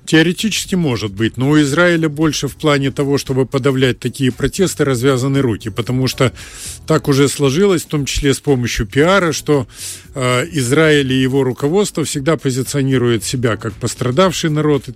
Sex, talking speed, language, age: male, 160 wpm, Russian, 50-69